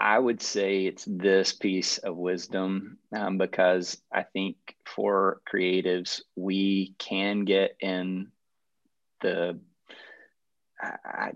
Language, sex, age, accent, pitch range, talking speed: English, male, 30-49, American, 95-105 Hz, 105 wpm